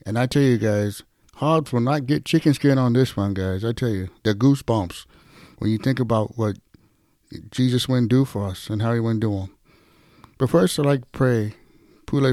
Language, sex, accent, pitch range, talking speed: English, male, American, 110-135 Hz, 210 wpm